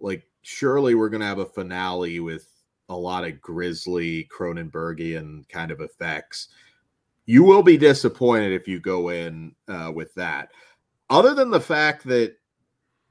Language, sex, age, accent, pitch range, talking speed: English, male, 30-49, American, 100-140 Hz, 150 wpm